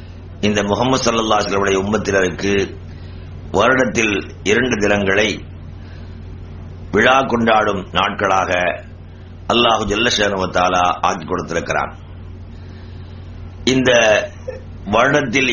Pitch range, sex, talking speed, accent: 90-120 Hz, male, 60 wpm, Indian